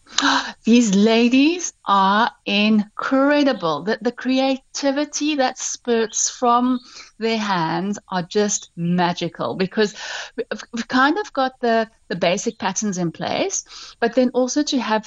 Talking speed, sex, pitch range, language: 125 wpm, female, 195-255 Hz, English